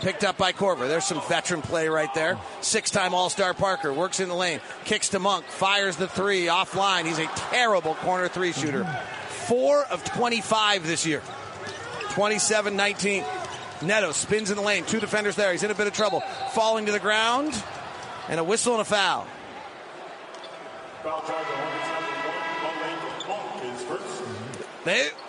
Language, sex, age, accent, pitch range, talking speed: English, male, 40-59, American, 180-225 Hz, 145 wpm